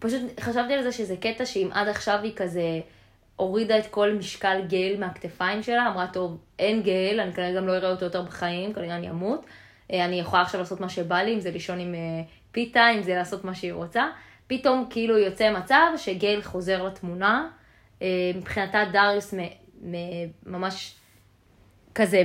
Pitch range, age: 180-225 Hz, 20-39